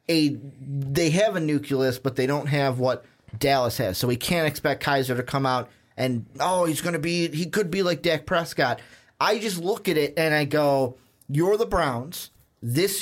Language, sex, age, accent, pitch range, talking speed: English, male, 30-49, American, 130-165 Hz, 205 wpm